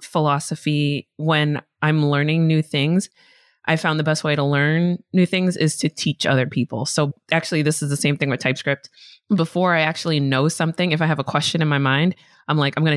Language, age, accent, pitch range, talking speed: English, 20-39, American, 145-180 Hz, 215 wpm